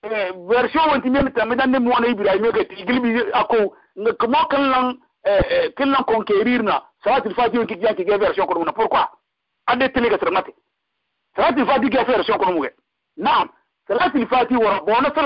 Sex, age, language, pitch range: male, 50-69, English, 215-280 Hz